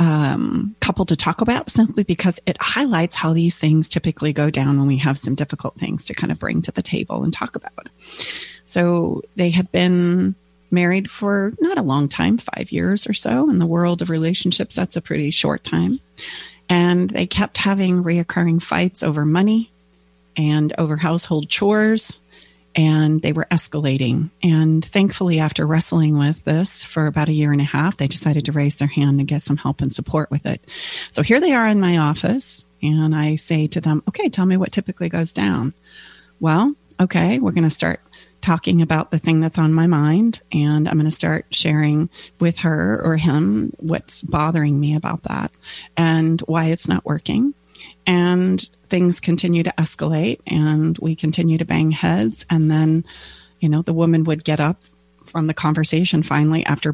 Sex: female